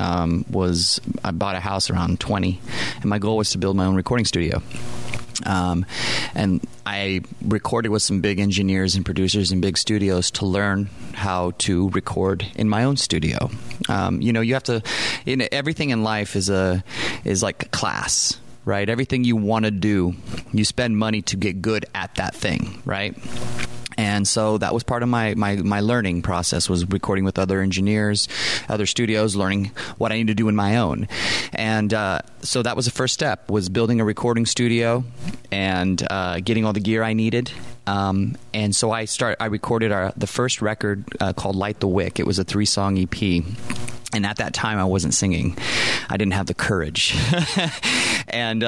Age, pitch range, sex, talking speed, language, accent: 30-49, 95-120 Hz, male, 190 wpm, English, American